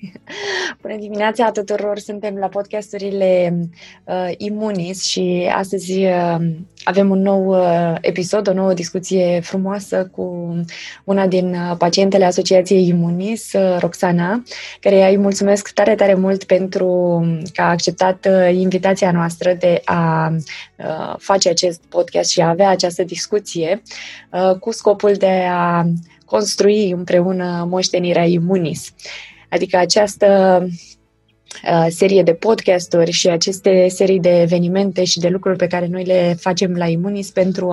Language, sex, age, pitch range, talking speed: Romanian, female, 20-39, 175-195 Hz, 135 wpm